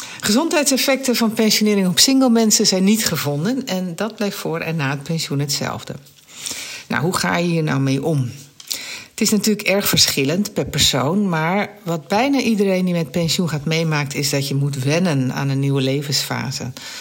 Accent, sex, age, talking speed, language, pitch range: Dutch, female, 60-79, 175 wpm, Dutch, 155-210 Hz